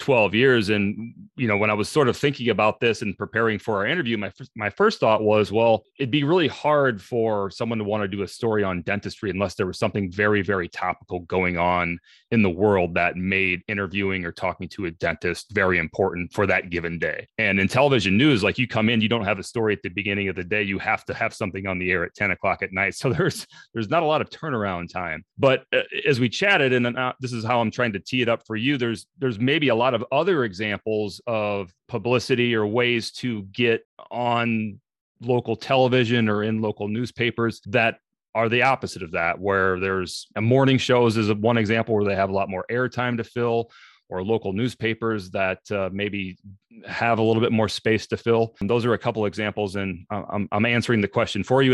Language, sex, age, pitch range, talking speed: English, male, 30-49, 100-120 Hz, 225 wpm